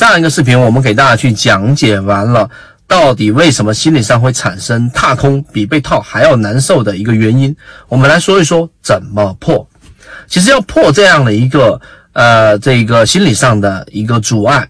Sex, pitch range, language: male, 110-150 Hz, Chinese